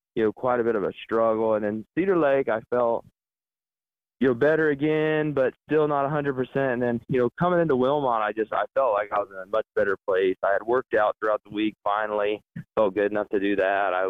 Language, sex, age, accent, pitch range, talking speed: English, male, 20-39, American, 105-130 Hz, 240 wpm